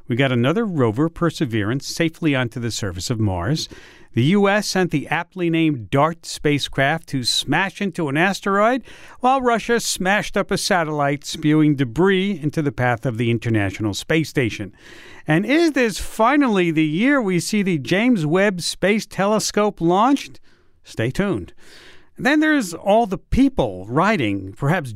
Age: 50-69